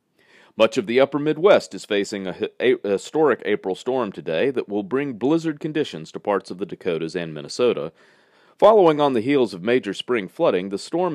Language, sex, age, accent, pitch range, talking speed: English, male, 40-59, American, 95-145 Hz, 185 wpm